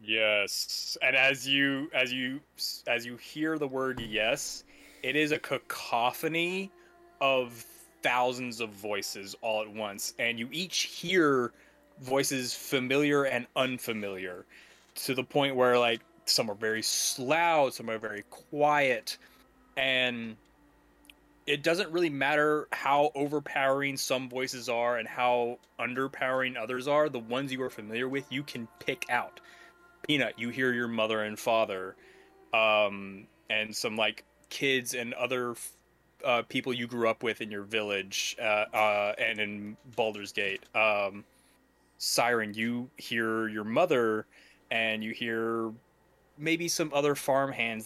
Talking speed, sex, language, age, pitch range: 140 wpm, male, English, 20-39, 110-135 Hz